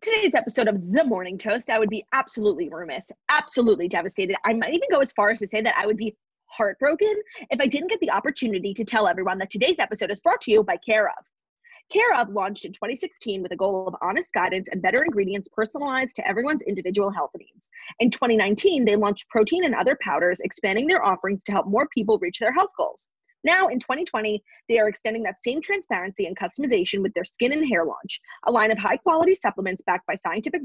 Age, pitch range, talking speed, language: 20-39, 195-290 Hz, 215 wpm, English